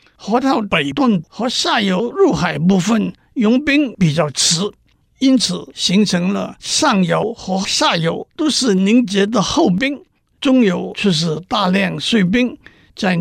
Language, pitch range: Chinese, 180-240 Hz